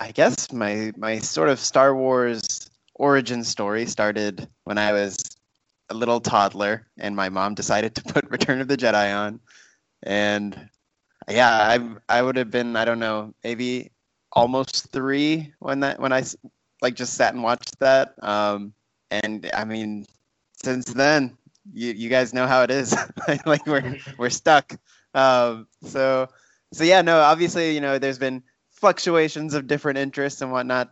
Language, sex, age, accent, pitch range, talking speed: English, male, 20-39, American, 100-130 Hz, 165 wpm